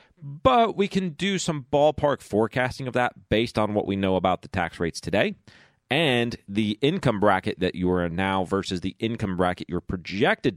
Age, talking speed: 30-49, 195 wpm